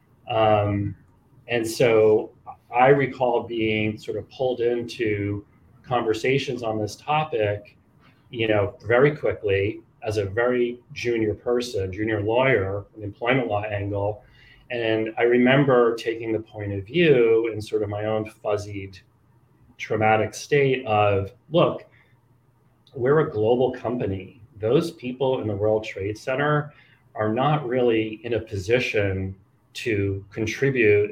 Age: 30-49